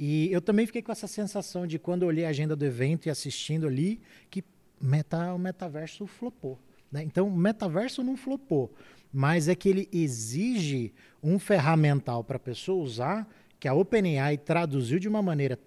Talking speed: 170 wpm